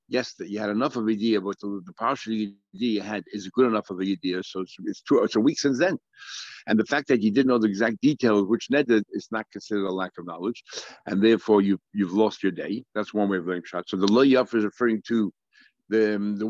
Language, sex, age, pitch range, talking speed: English, male, 60-79, 100-120 Hz, 255 wpm